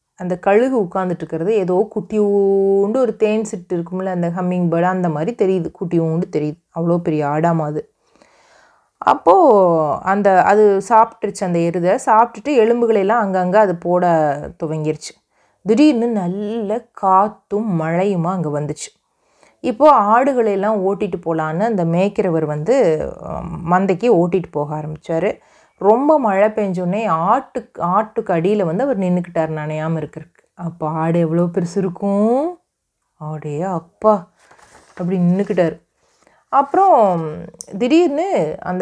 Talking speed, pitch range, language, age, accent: 115 wpm, 170-225 Hz, Tamil, 30-49, native